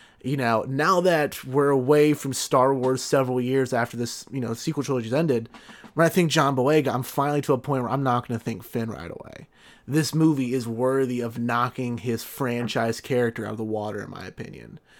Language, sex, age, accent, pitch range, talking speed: English, male, 30-49, American, 115-140 Hz, 210 wpm